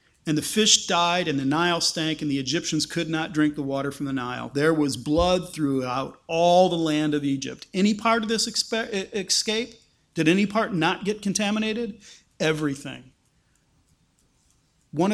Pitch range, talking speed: 160-225 Hz, 165 wpm